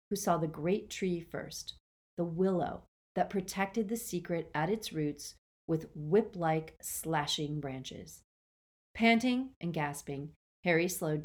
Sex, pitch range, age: female, 155-225 Hz, 40-59